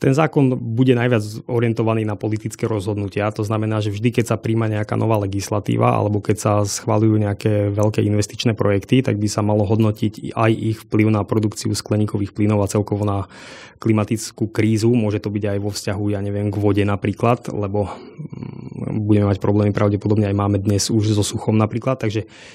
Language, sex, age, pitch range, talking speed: Slovak, male, 20-39, 105-115 Hz, 180 wpm